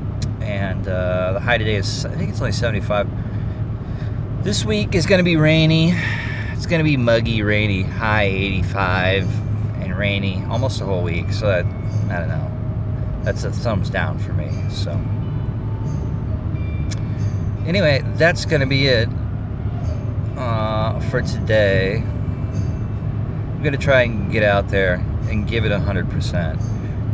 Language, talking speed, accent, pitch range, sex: English, 145 wpm, American, 100-120 Hz, male